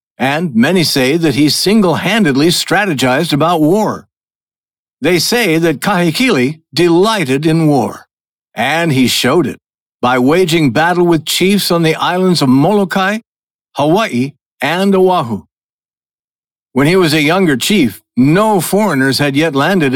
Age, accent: 60-79, American